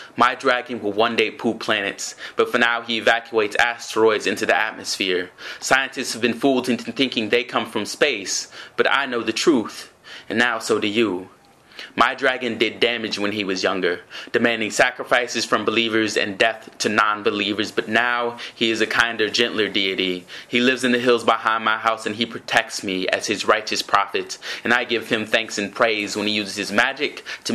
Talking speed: 195 wpm